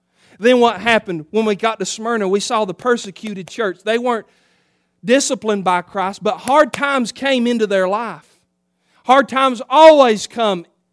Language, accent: English, American